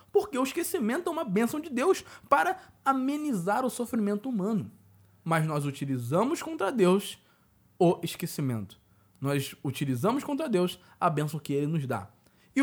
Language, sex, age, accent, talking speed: Portuguese, male, 20-39, Brazilian, 145 wpm